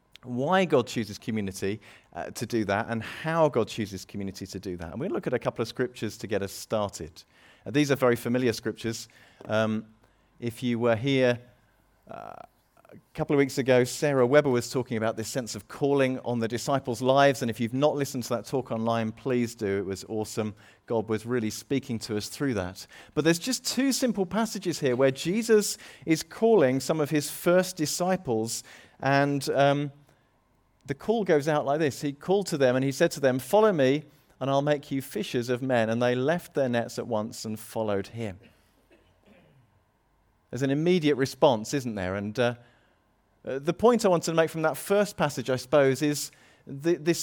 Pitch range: 115-160 Hz